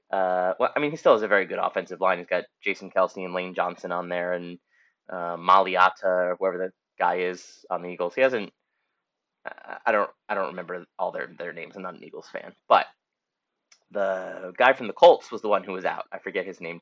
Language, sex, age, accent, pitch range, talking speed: English, male, 20-39, American, 90-110 Hz, 230 wpm